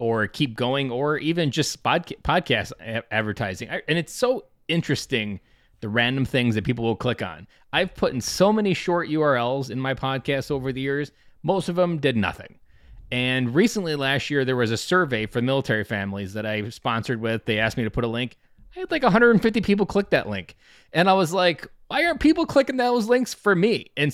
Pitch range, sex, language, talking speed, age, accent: 115-160 Hz, male, English, 205 wpm, 20-39, American